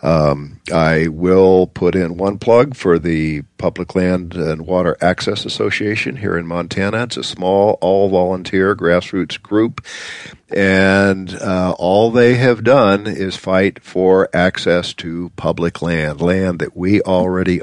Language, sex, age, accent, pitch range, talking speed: English, male, 50-69, American, 80-95 Hz, 140 wpm